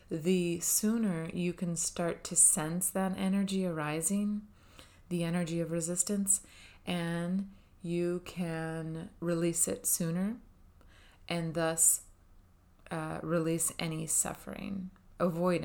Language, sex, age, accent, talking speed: English, female, 30-49, American, 105 wpm